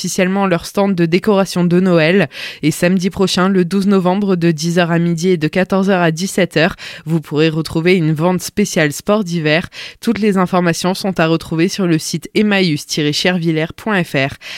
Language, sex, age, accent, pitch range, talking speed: French, female, 20-39, French, 165-195 Hz, 160 wpm